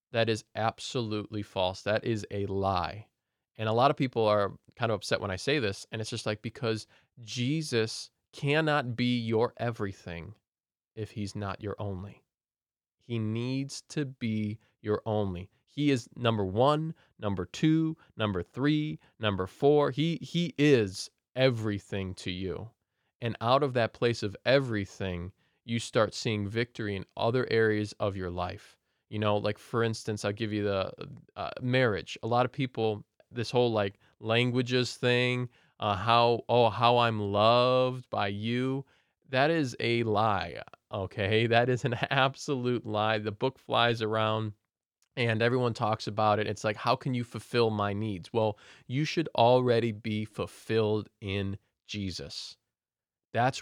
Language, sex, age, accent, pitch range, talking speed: English, male, 20-39, American, 105-125 Hz, 155 wpm